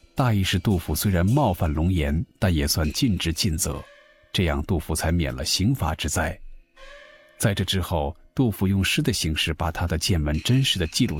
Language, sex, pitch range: Chinese, male, 85-110 Hz